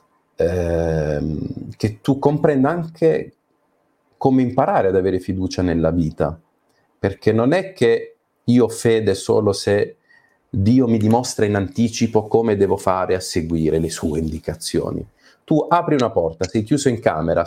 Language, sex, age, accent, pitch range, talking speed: Italian, male, 40-59, native, 100-140 Hz, 140 wpm